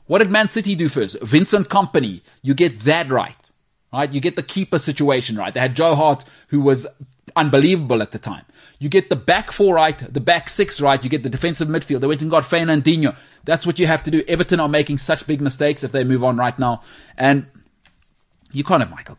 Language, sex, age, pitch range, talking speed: English, male, 30-49, 135-170 Hz, 230 wpm